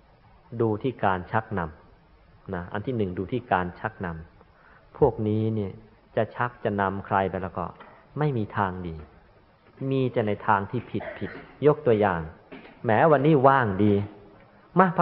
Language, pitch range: Thai, 100-130 Hz